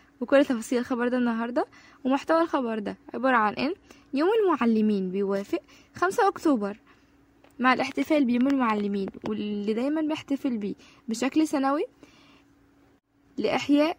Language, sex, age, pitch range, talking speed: Arabic, female, 10-29, 215-295 Hz, 115 wpm